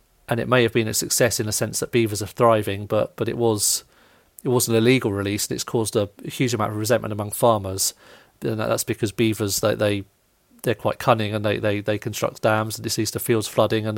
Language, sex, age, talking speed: English, male, 30-49, 235 wpm